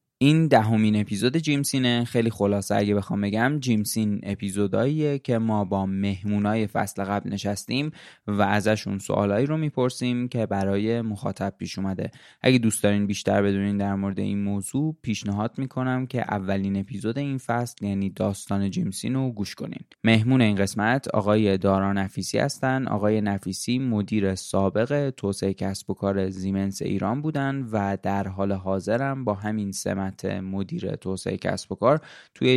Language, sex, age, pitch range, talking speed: Persian, male, 20-39, 100-120 Hz, 150 wpm